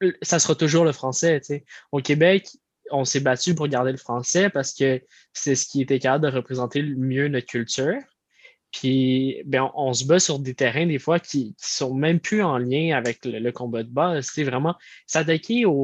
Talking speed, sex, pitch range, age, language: 210 wpm, male, 130-160 Hz, 20-39, French